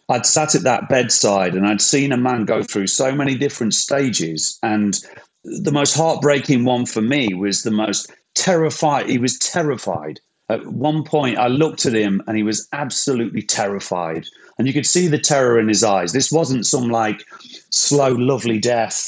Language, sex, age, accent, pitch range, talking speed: English, male, 40-59, British, 100-135 Hz, 180 wpm